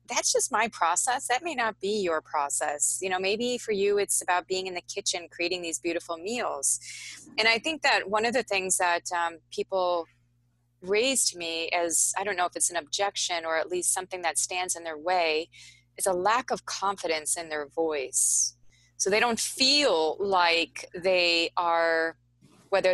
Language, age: English, 20-39